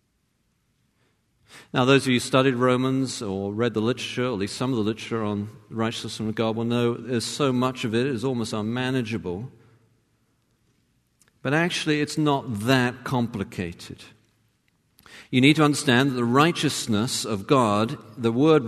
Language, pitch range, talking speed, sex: English, 110-135 Hz, 160 wpm, male